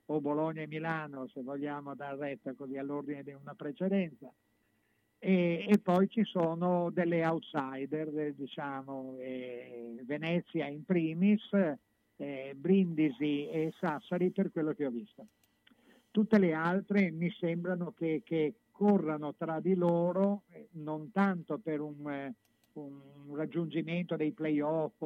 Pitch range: 145-170 Hz